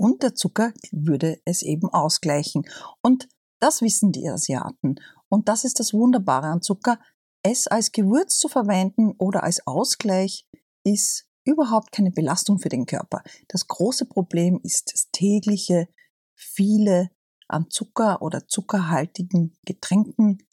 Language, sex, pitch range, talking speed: German, female, 180-230 Hz, 135 wpm